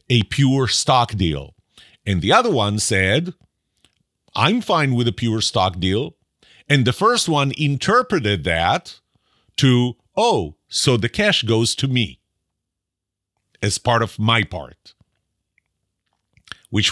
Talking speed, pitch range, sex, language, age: 130 wpm, 95-130 Hz, male, English, 50-69